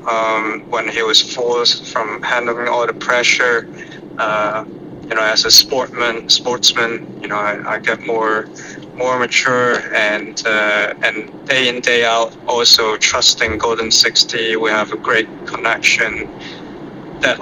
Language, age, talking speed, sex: English, 30-49, 145 wpm, male